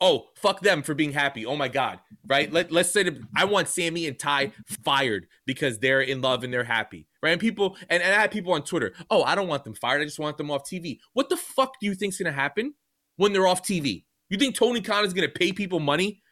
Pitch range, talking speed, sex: 145-200 Hz, 260 wpm, male